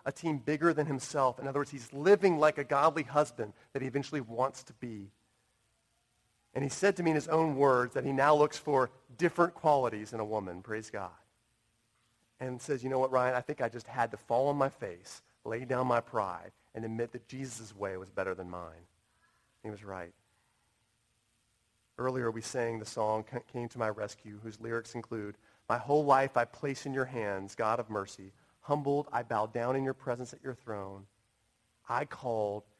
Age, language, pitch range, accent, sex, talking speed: 40-59, English, 110-135 Hz, American, male, 200 wpm